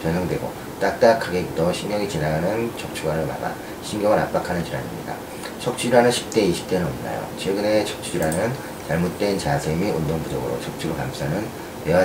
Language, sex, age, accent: Korean, male, 40-59, native